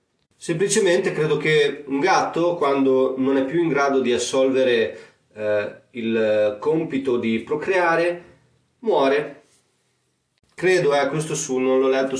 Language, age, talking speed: Italian, 30-49, 130 wpm